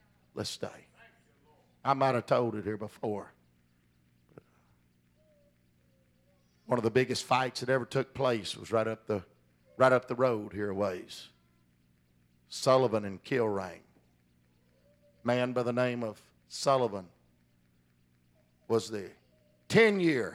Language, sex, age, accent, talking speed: English, male, 50-69, American, 120 wpm